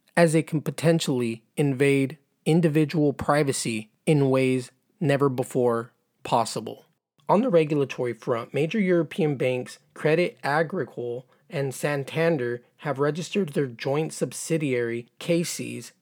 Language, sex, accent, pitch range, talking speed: English, male, American, 125-160 Hz, 110 wpm